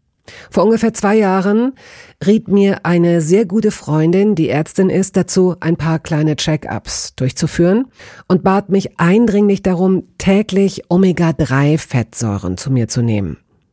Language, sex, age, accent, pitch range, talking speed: German, female, 50-69, German, 145-195 Hz, 130 wpm